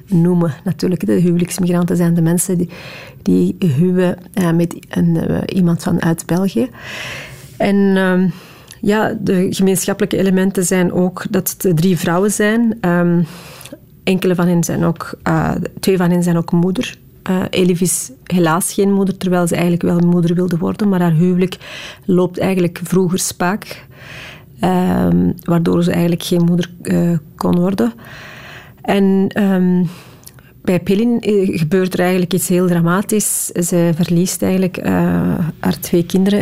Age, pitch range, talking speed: 40-59, 170-190 Hz, 140 wpm